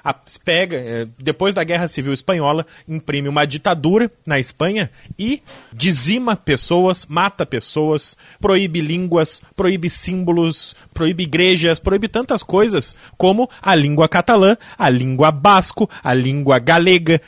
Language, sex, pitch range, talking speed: Portuguese, male, 140-185 Hz, 120 wpm